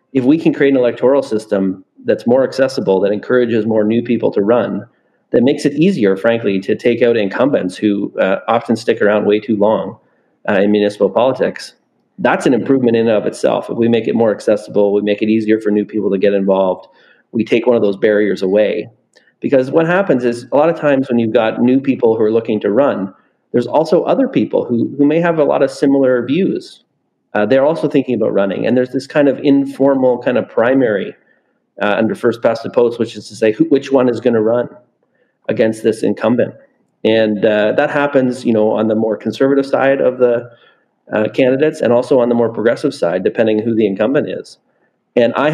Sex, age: male, 30-49